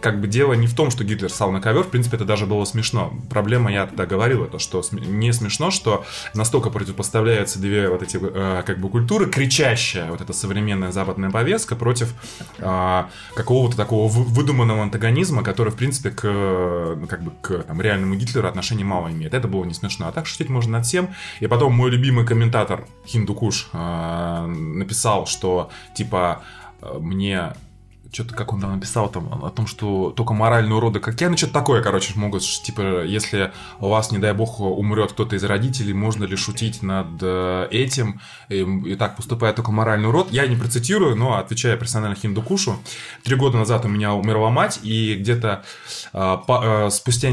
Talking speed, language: 180 wpm, Russian